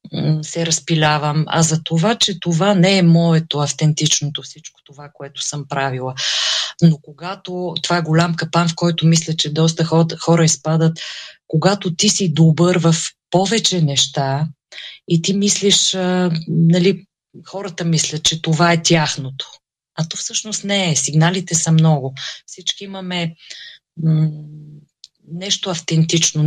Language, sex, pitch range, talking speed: Bulgarian, female, 150-175 Hz, 130 wpm